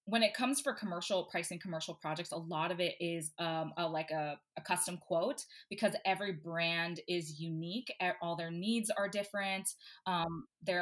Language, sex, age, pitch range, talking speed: English, female, 20-39, 165-195 Hz, 185 wpm